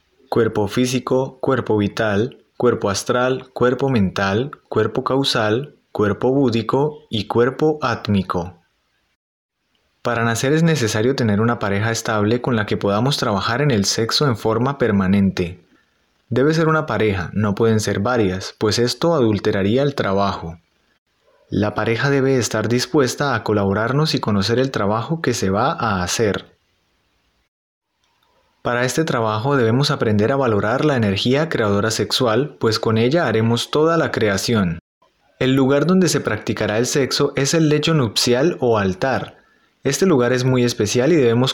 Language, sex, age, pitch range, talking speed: Spanish, male, 30-49, 105-140 Hz, 145 wpm